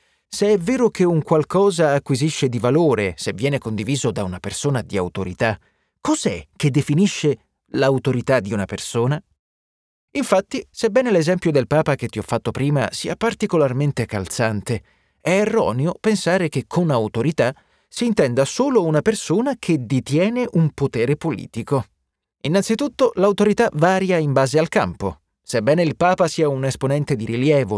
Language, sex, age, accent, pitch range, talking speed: Italian, male, 30-49, native, 115-185 Hz, 145 wpm